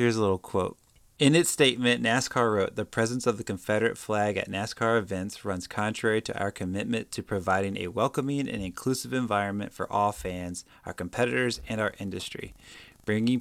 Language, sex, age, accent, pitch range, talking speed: English, male, 20-39, American, 95-115 Hz, 175 wpm